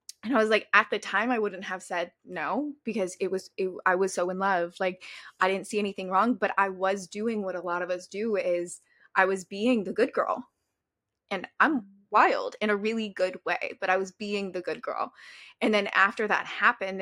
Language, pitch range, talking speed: English, 185-220 Hz, 220 wpm